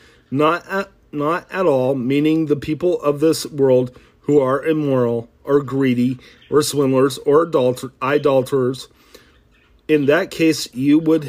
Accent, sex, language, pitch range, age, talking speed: American, male, English, 120-150 Hz, 40-59, 140 wpm